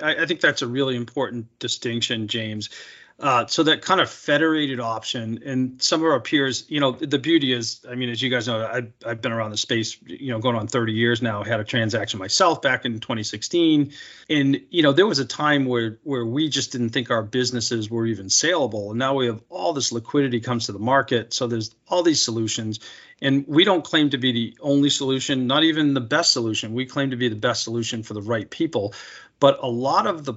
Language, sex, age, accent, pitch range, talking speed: English, male, 40-59, American, 115-140 Hz, 225 wpm